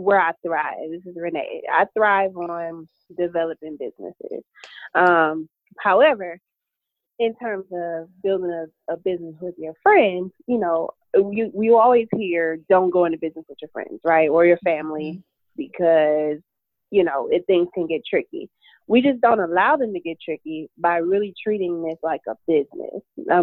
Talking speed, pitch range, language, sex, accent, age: 165 wpm, 165-195 Hz, English, female, American, 20-39